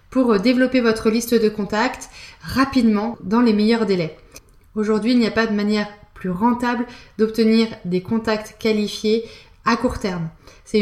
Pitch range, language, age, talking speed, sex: 220-260 Hz, French, 20-39, 155 wpm, female